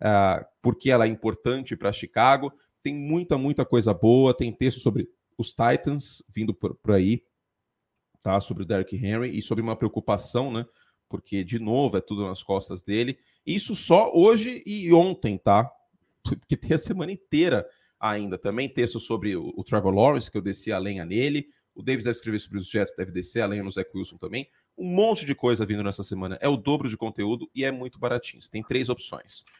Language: Portuguese